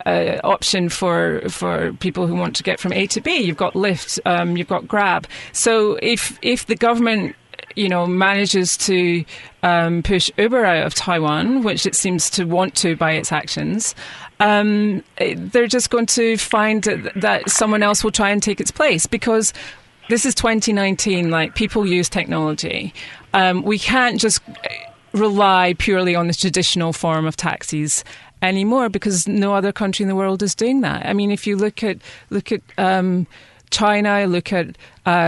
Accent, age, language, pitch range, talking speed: British, 30-49, English, 175-220 Hz, 175 wpm